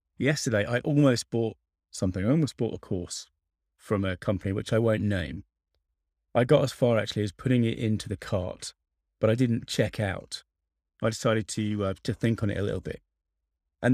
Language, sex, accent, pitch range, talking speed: English, male, British, 80-120 Hz, 195 wpm